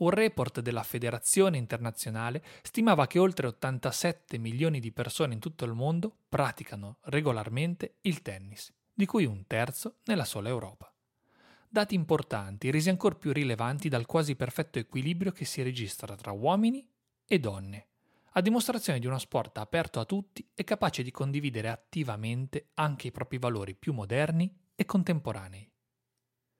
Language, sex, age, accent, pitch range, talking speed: Italian, male, 30-49, native, 115-175 Hz, 145 wpm